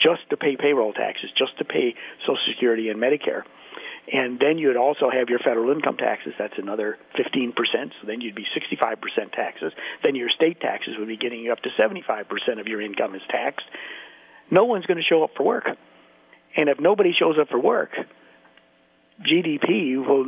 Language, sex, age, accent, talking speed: English, male, 50-69, American, 185 wpm